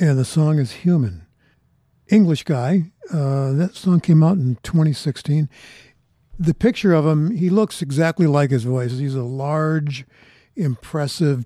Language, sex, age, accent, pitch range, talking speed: English, male, 60-79, American, 125-175 Hz, 145 wpm